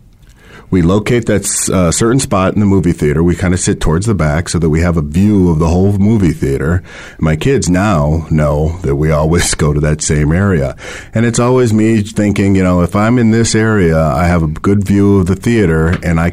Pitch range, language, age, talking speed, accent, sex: 85-110 Hz, English, 40-59, 230 wpm, American, male